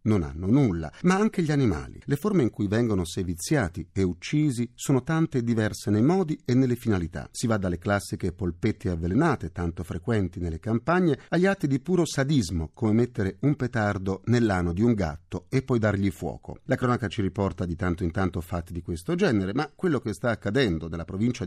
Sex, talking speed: male, 195 wpm